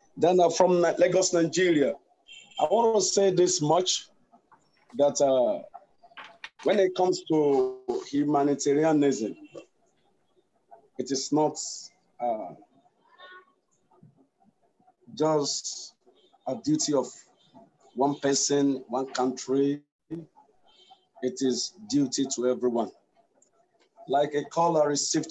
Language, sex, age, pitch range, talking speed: Russian, male, 50-69, 135-190 Hz, 90 wpm